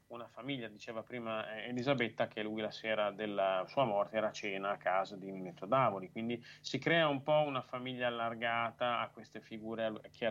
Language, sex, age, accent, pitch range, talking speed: Italian, male, 30-49, native, 110-135 Hz, 185 wpm